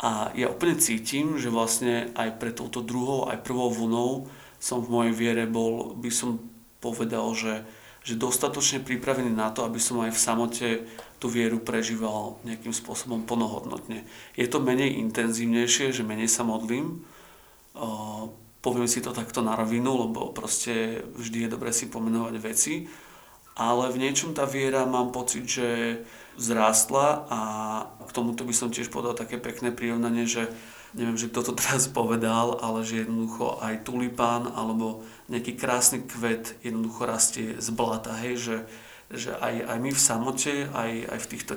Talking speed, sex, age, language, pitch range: 160 wpm, male, 40-59, Slovak, 115-125 Hz